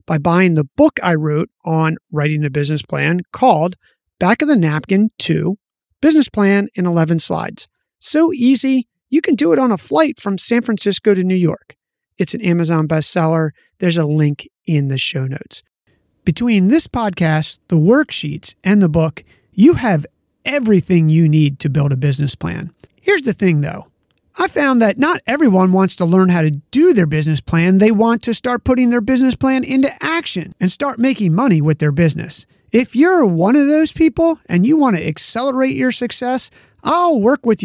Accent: American